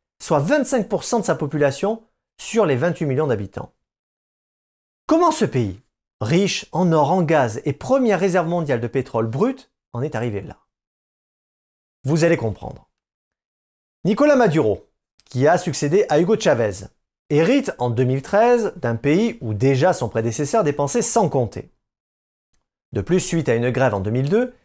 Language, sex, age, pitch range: French, male, 40-59, 125-205 Hz